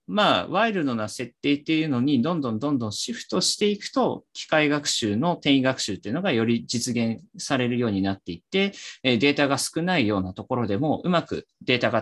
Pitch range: 110-155 Hz